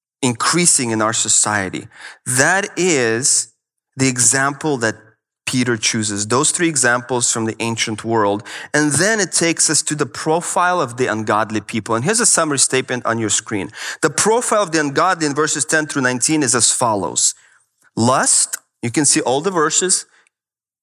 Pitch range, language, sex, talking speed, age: 130-190 Hz, English, male, 165 wpm, 30-49